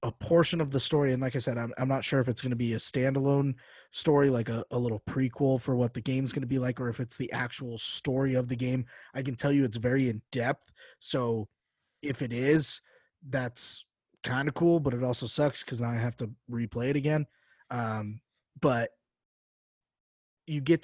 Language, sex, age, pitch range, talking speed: English, male, 20-39, 115-135 Hz, 215 wpm